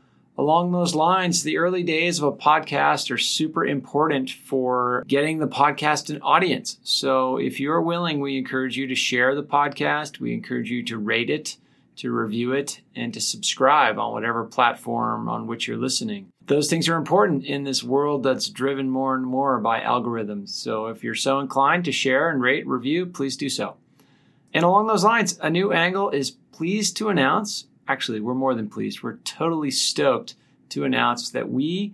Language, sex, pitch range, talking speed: English, male, 125-155 Hz, 185 wpm